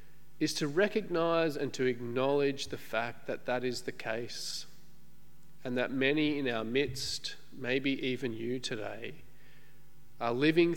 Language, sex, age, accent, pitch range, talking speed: English, male, 40-59, Australian, 125-155 Hz, 140 wpm